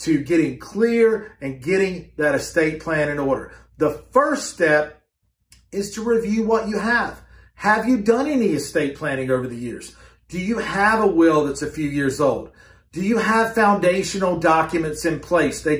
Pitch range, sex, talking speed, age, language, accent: 150-205 Hz, male, 175 wpm, 40-59, English, American